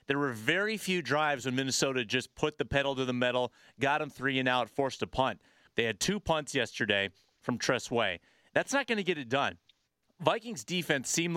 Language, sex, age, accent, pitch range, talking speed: English, male, 30-49, American, 130-170 Hz, 205 wpm